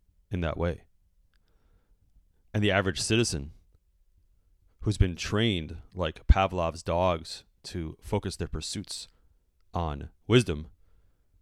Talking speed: 100 wpm